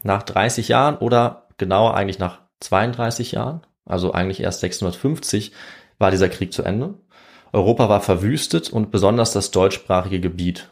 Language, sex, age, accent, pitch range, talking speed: German, male, 30-49, German, 90-110 Hz, 145 wpm